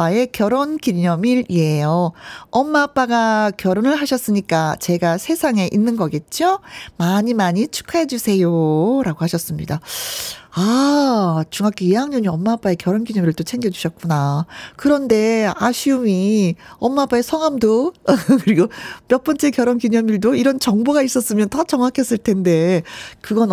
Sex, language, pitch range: female, Korean, 175-255 Hz